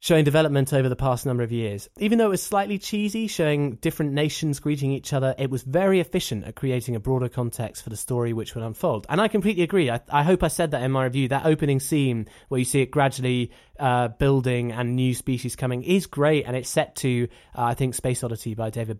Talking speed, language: 235 wpm, English